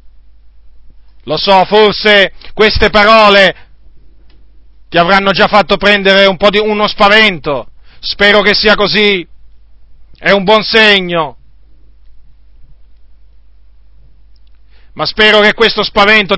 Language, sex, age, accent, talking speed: Italian, male, 40-59, native, 105 wpm